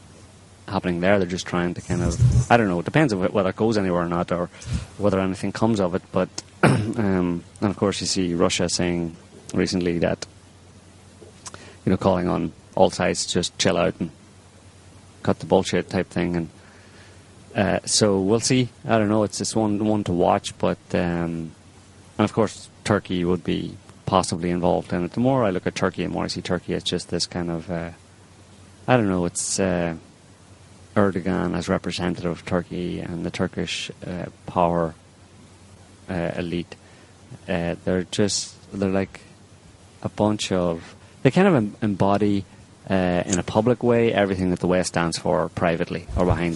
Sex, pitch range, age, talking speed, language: male, 90-100 Hz, 30-49, 180 wpm, English